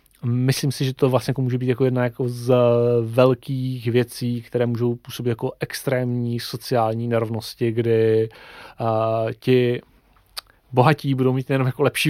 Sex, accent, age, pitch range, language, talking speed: male, native, 30-49, 110-130 Hz, Czech, 150 wpm